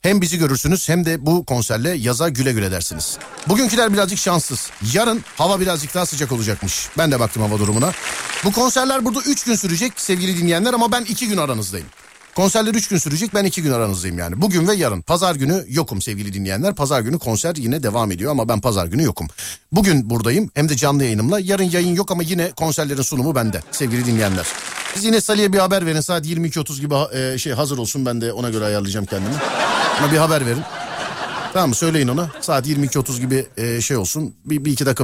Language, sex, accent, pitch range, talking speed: Turkish, male, native, 120-185 Hz, 200 wpm